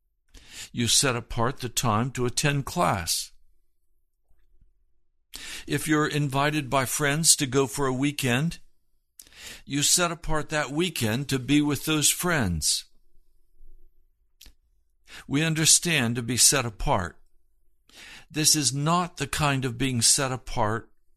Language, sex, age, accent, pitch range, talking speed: English, male, 60-79, American, 110-150 Hz, 120 wpm